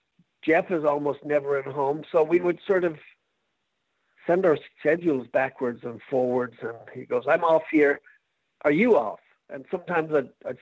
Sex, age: male, 50-69